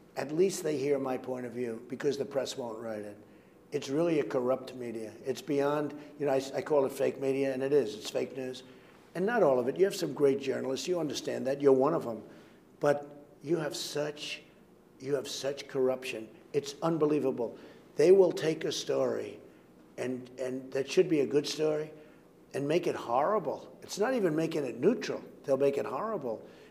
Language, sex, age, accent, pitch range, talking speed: English, male, 60-79, American, 130-170 Hz, 200 wpm